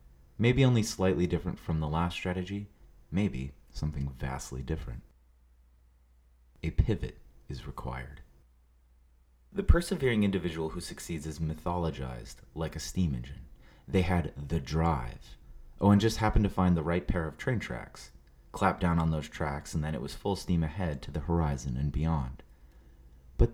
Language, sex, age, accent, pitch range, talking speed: English, male, 30-49, American, 65-90 Hz, 155 wpm